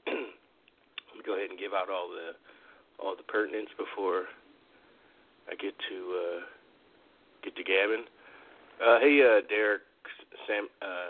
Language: English